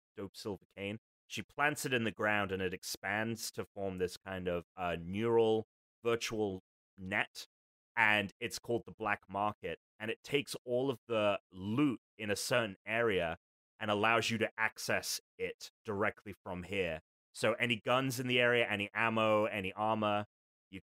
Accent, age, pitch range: British, 30-49, 85-110 Hz